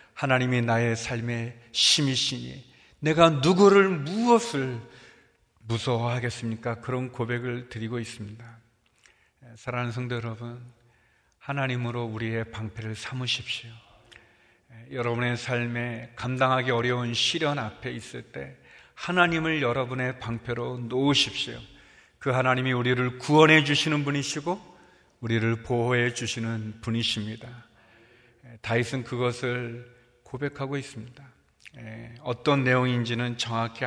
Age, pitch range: 40-59, 115-135 Hz